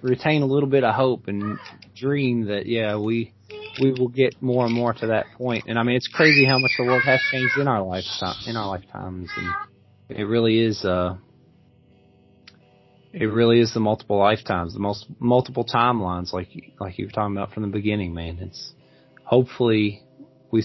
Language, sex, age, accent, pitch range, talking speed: English, male, 30-49, American, 100-125 Hz, 190 wpm